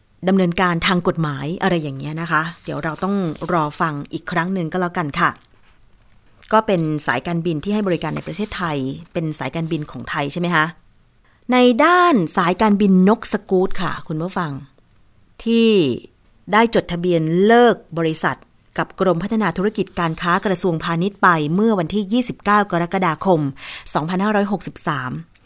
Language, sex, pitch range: Thai, female, 165-205 Hz